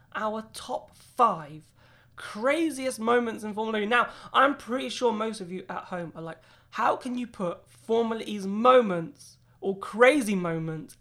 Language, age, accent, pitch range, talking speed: English, 20-39, British, 185-240 Hz, 160 wpm